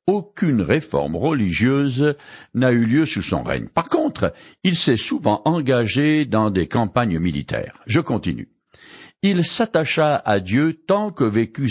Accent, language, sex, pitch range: French, French, male, 105-165 Hz